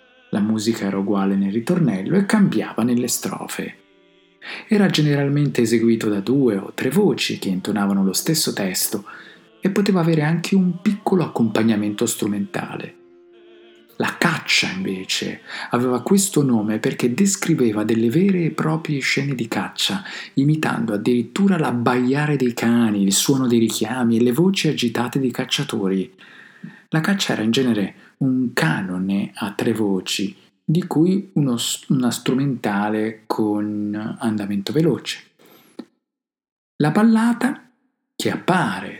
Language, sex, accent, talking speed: Italian, male, native, 125 wpm